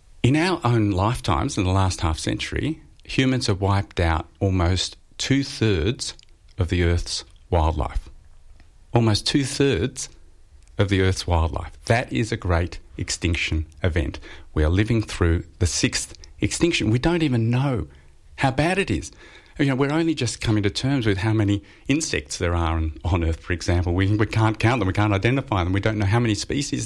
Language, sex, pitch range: English, male, 85-115 Hz